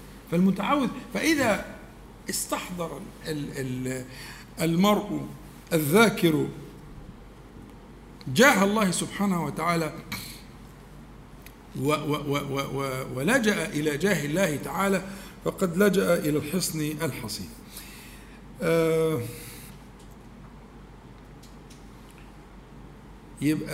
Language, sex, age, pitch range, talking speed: Arabic, male, 60-79, 145-210 Hz, 65 wpm